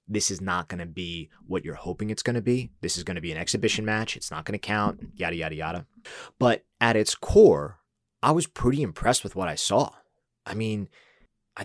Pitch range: 90-115 Hz